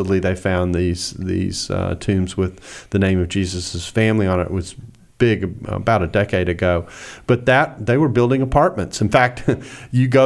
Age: 40-59